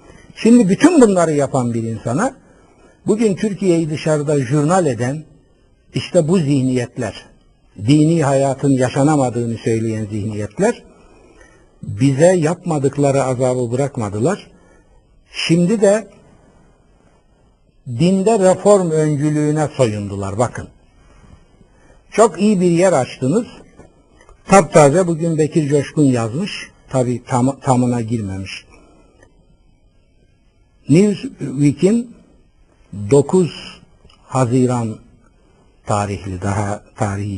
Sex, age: male, 60-79